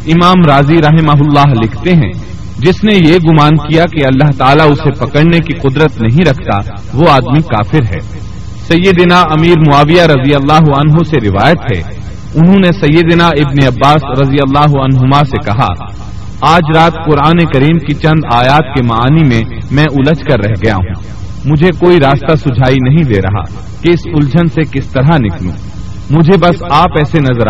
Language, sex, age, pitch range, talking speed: Urdu, male, 40-59, 115-155 Hz, 170 wpm